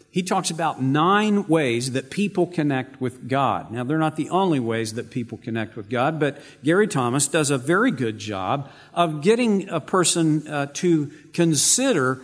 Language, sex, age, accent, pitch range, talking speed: English, male, 50-69, American, 130-175 Hz, 175 wpm